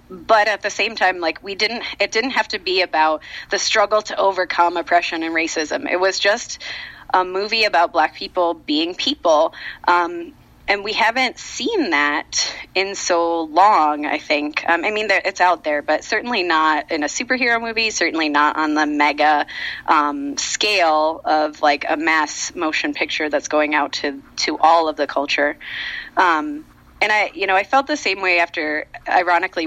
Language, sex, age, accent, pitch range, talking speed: English, female, 30-49, American, 155-210 Hz, 180 wpm